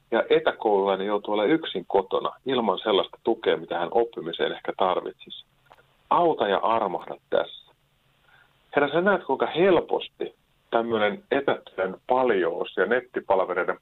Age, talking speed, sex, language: 50-69, 120 wpm, male, Finnish